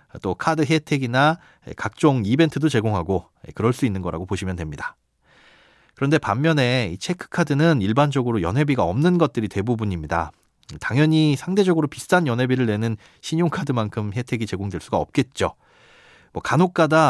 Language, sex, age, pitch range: Korean, male, 30-49, 105-165 Hz